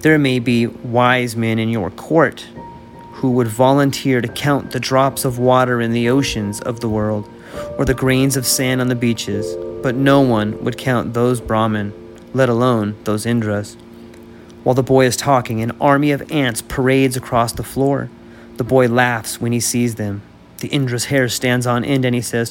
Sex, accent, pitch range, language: male, American, 110-130 Hz, English